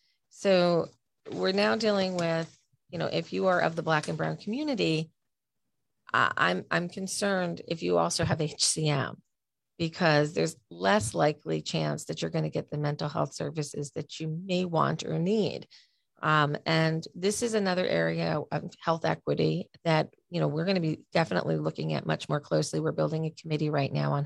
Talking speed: 180 wpm